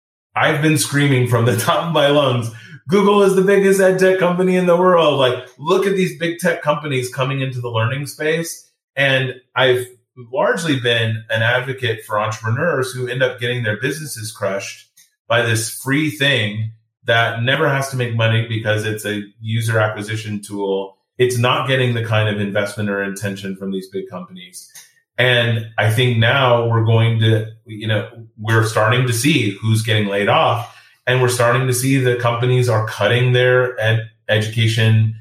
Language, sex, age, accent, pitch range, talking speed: English, male, 30-49, American, 110-130 Hz, 175 wpm